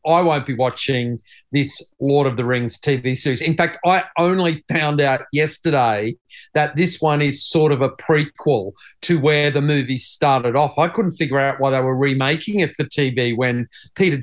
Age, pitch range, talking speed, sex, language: 40-59, 130-160 Hz, 190 wpm, male, English